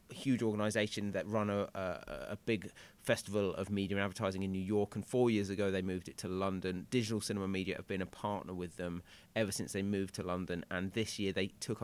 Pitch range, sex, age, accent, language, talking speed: 100-125 Hz, male, 30-49, British, English, 225 wpm